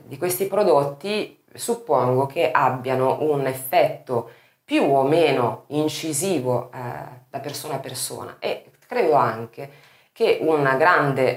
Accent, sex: native, female